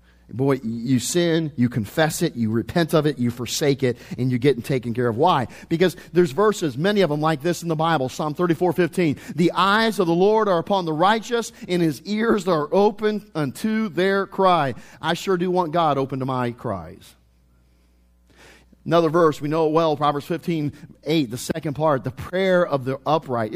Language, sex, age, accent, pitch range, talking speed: English, male, 40-59, American, 130-180 Hz, 195 wpm